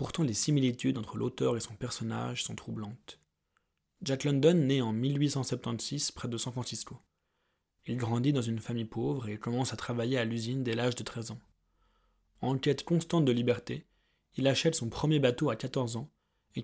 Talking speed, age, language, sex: 180 wpm, 20-39, French, male